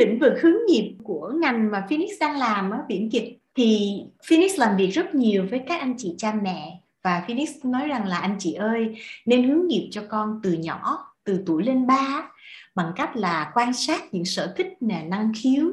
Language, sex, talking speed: Vietnamese, female, 210 wpm